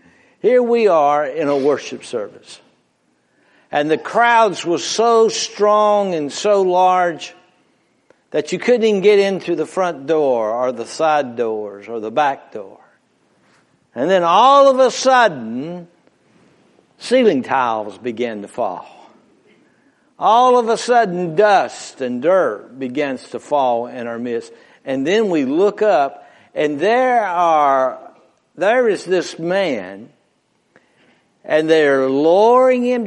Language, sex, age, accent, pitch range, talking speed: English, male, 60-79, American, 130-220 Hz, 130 wpm